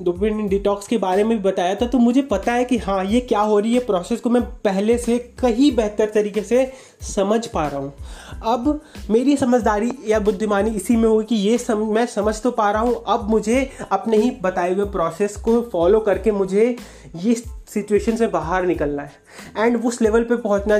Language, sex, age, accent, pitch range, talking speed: Hindi, male, 30-49, native, 185-225 Hz, 205 wpm